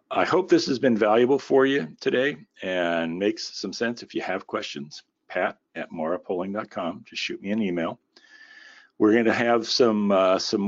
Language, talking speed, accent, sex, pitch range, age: English, 175 wpm, American, male, 90-130 Hz, 50-69